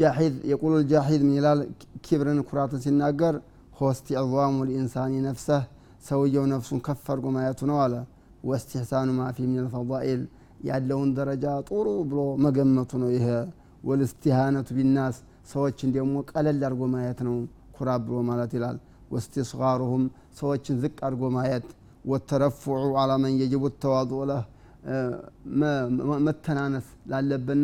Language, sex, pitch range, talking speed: Amharic, male, 130-145 Hz, 105 wpm